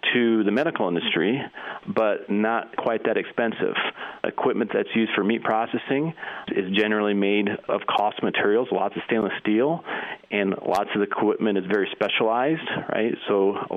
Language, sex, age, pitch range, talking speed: English, male, 40-59, 95-110 Hz, 155 wpm